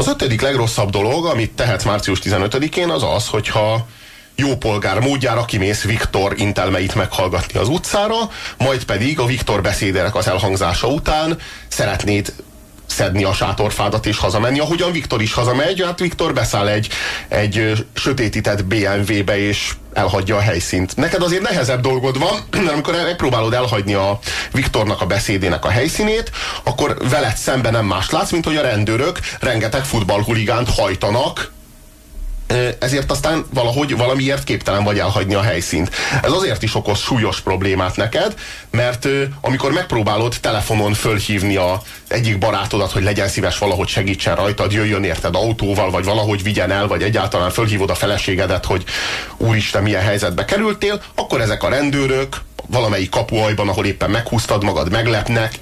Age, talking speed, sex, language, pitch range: 30-49, 145 wpm, male, Hungarian, 100-125 Hz